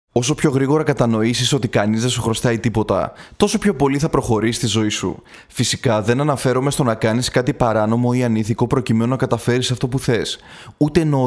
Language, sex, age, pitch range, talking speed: Greek, male, 20-39, 110-140 Hz, 190 wpm